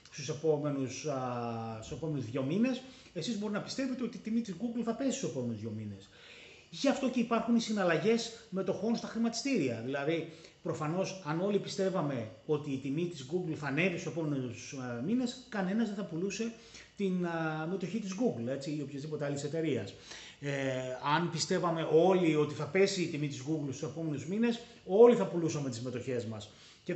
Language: Greek